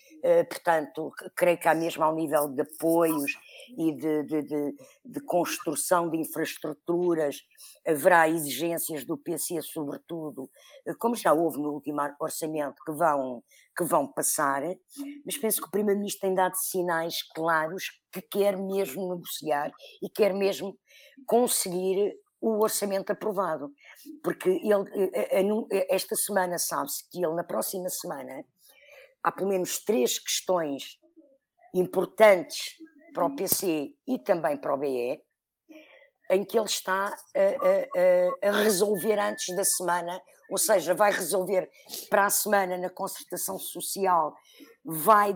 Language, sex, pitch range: Portuguese, female, 165-215 Hz